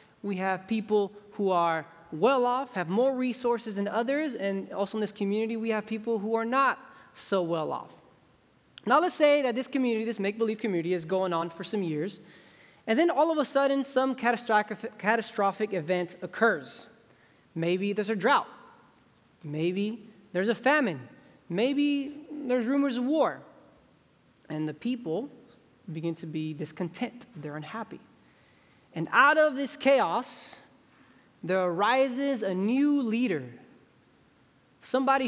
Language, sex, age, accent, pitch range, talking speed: English, male, 20-39, American, 180-250 Hz, 140 wpm